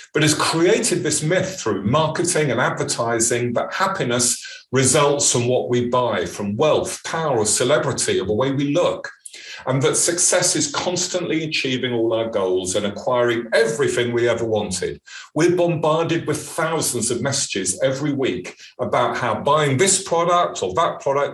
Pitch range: 120-180 Hz